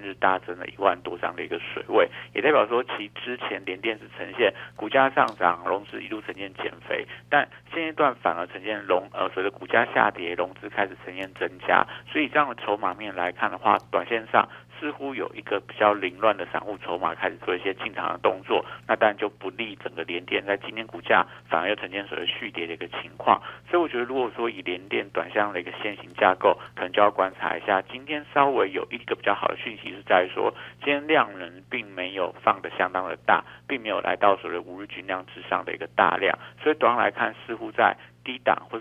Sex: male